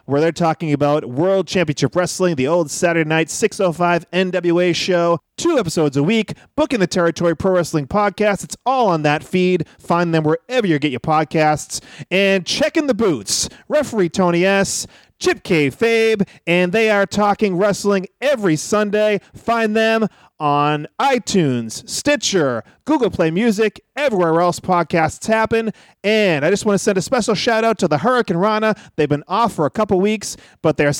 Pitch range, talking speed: 155-215 Hz, 170 wpm